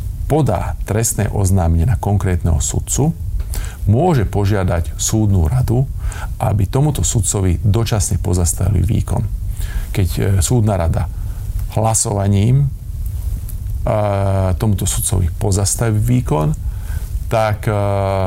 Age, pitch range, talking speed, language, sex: 40-59, 90-110 Hz, 80 wpm, Slovak, male